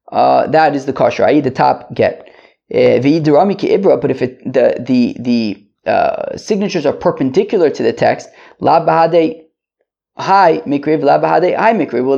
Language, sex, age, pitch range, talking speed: English, male, 20-39, 130-205 Hz, 120 wpm